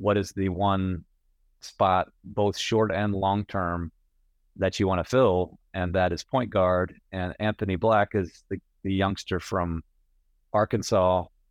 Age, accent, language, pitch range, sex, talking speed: 40-59, American, English, 85-110 Hz, male, 150 wpm